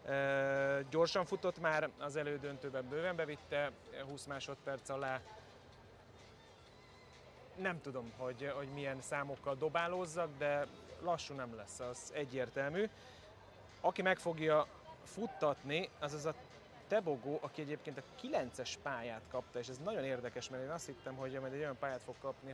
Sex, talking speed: male, 140 wpm